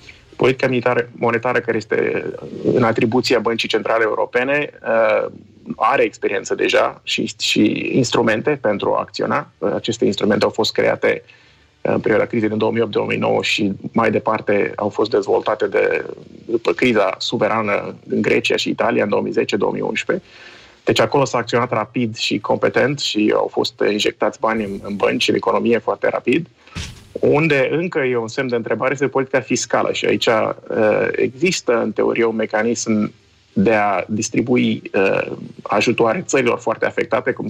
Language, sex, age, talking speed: Romanian, male, 30-49, 140 wpm